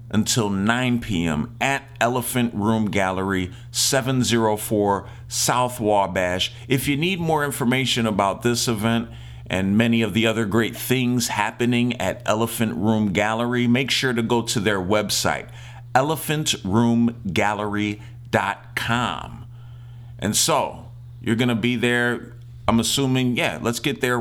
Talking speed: 125 wpm